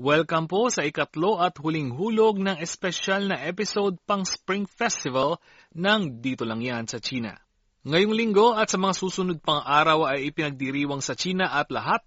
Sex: male